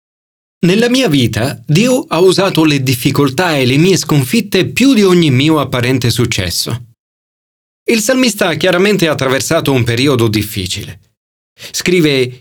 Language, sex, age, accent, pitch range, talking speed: Italian, male, 40-59, native, 110-175 Hz, 130 wpm